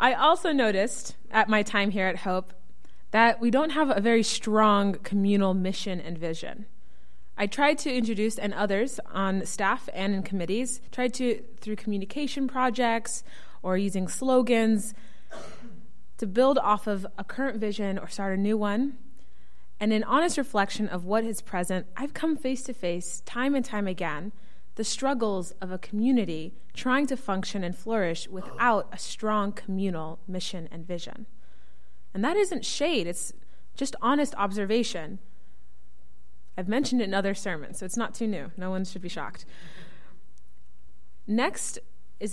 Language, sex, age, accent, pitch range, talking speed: English, female, 20-39, American, 185-240 Hz, 155 wpm